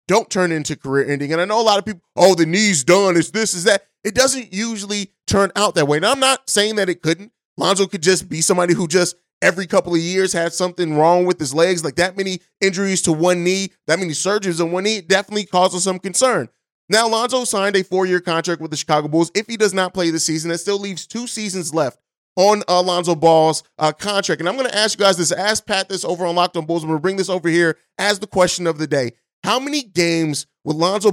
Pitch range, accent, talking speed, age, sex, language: 165-200 Hz, American, 255 wpm, 30-49, male, English